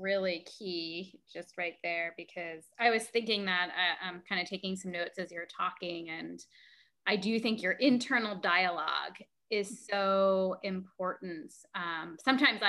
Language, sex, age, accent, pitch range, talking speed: English, female, 20-39, American, 185-235 Hz, 150 wpm